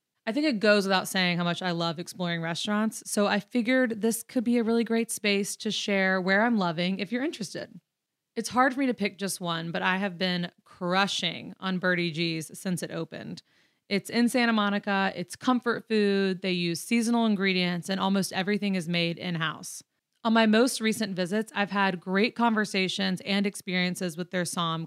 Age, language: 30-49, English